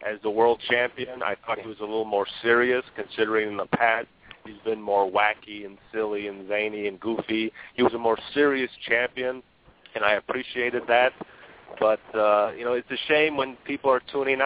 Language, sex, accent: English, male, American